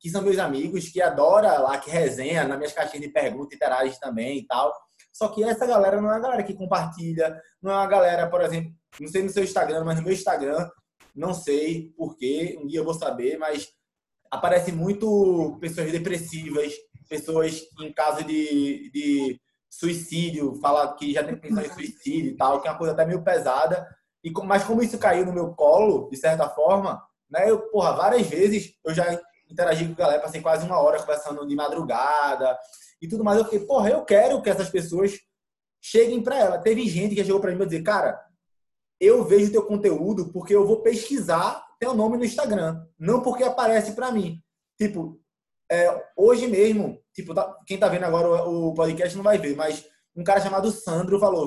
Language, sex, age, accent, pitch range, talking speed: Portuguese, male, 20-39, Brazilian, 160-215 Hz, 195 wpm